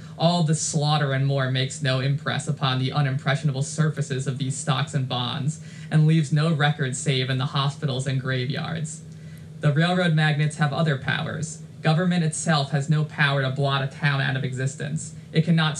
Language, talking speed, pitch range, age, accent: English, 180 wpm, 140-155 Hz, 20-39, American